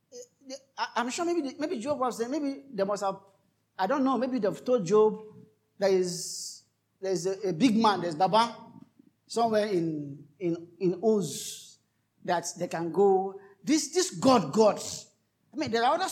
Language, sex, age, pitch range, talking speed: English, male, 50-69, 180-245 Hz, 175 wpm